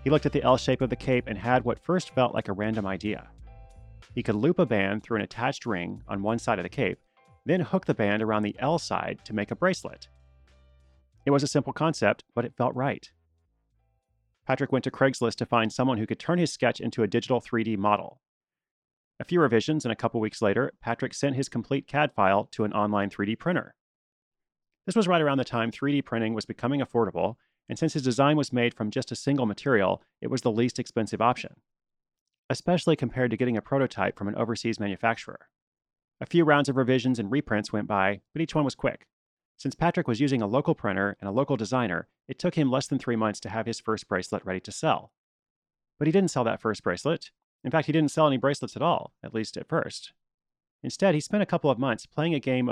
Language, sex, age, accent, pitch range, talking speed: English, male, 30-49, American, 110-140 Hz, 225 wpm